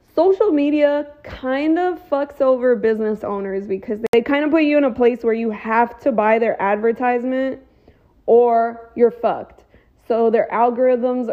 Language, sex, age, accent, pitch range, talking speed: English, female, 20-39, American, 215-265 Hz, 160 wpm